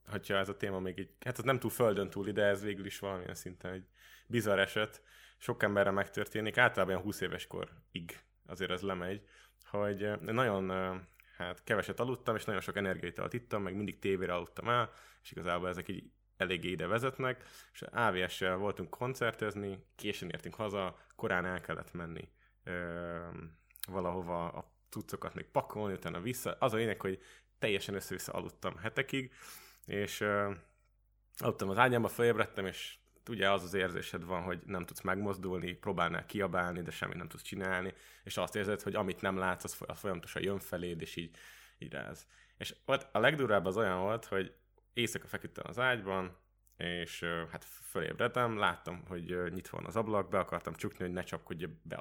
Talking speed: 170 wpm